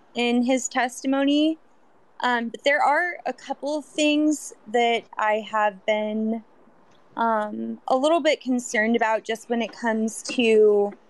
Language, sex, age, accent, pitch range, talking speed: English, female, 20-39, American, 215-265 Hz, 140 wpm